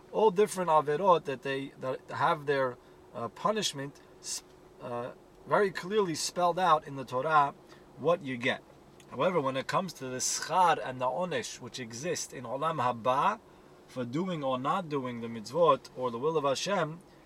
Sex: male